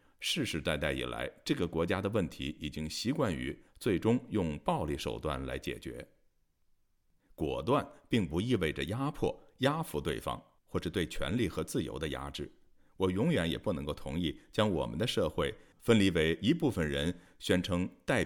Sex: male